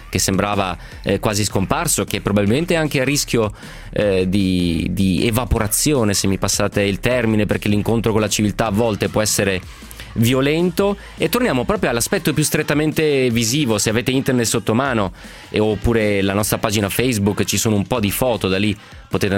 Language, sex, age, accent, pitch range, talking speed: Italian, male, 30-49, native, 95-125 Hz, 170 wpm